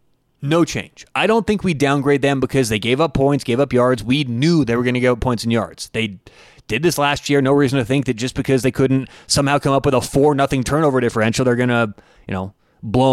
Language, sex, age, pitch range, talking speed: English, male, 20-39, 120-145 Hz, 255 wpm